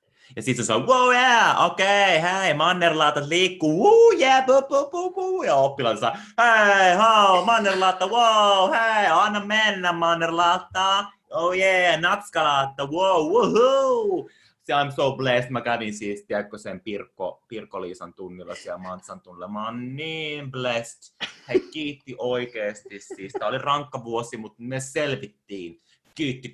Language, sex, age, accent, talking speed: Finnish, male, 30-49, native, 140 wpm